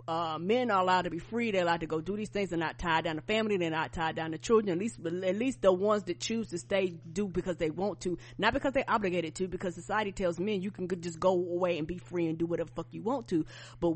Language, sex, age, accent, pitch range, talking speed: English, female, 30-49, American, 170-215 Hz, 290 wpm